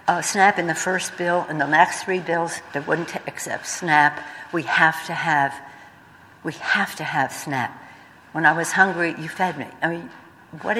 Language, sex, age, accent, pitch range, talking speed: English, female, 60-79, American, 150-180 Hz, 190 wpm